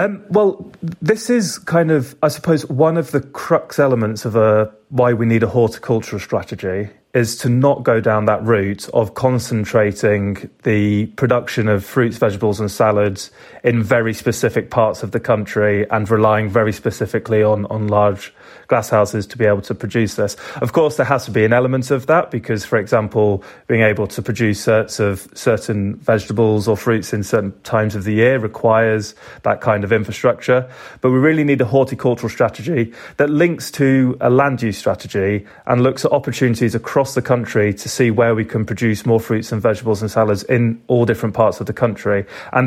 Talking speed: 185 wpm